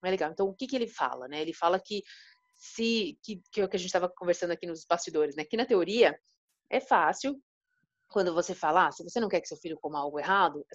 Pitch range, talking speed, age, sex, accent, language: 180-230 Hz, 245 wpm, 30-49, female, Brazilian, Portuguese